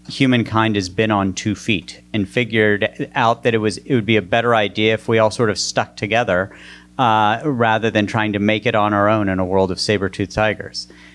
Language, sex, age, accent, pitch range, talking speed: English, male, 40-59, American, 95-120 Hz, 220 wpm